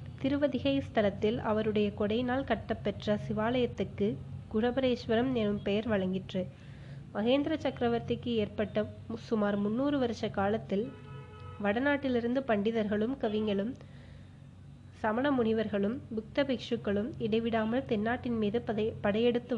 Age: 20-39